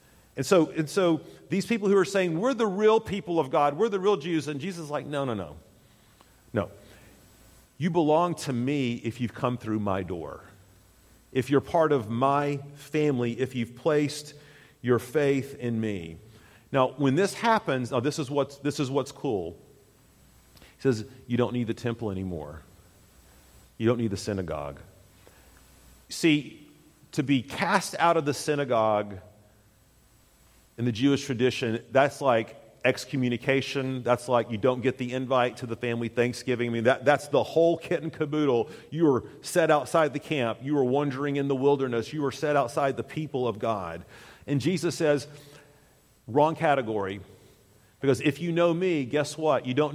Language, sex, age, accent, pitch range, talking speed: English, male, 40-59, American, 115-150 Hz, 175 wpm